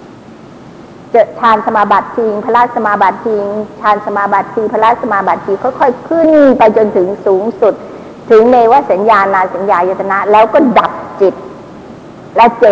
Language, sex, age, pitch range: Thai, female, 60-79, 200-255 Hz